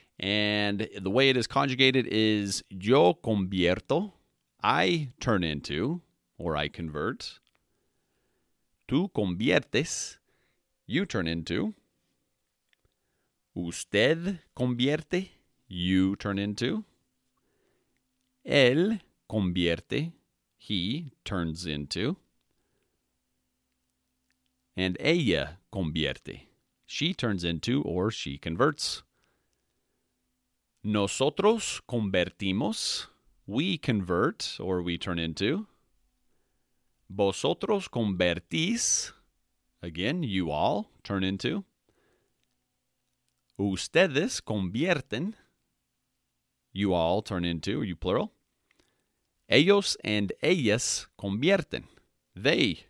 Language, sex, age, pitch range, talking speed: English, male, 40-59, 85-130 Hz, 75 wpm